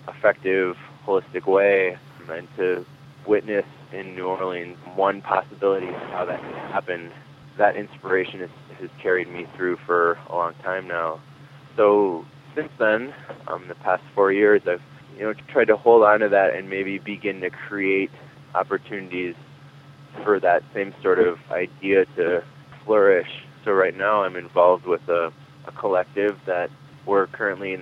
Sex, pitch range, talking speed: male, 90-130 Hz, 155 wpm